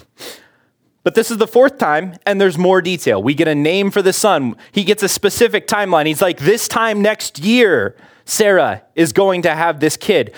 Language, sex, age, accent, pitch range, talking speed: English, male, 30-49, American, 155-220 Hz, 200 wpm